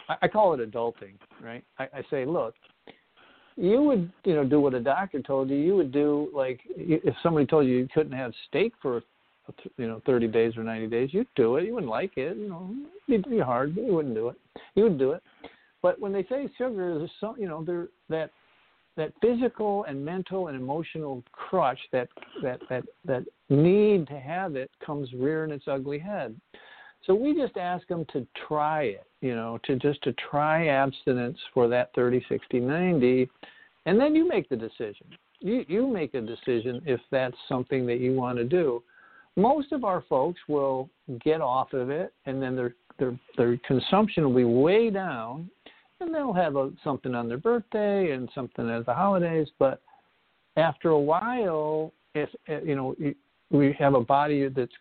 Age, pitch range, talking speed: 60-79, 130-185 Hz, 190 wpm